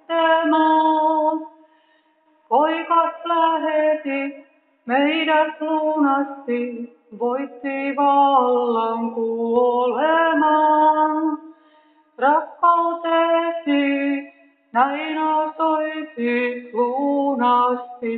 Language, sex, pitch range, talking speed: Finnish, female, 245-310 Hz, 35 wpm